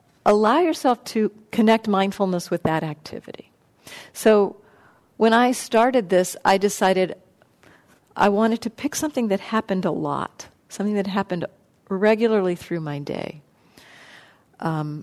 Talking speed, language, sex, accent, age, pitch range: 130 wpm, English, female, American, 50-69, 170-215 Hz